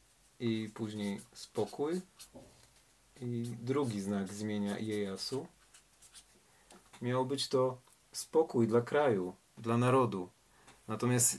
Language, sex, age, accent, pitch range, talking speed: Polish, male, 40-59, native, 110-125 Hz, 90 wpm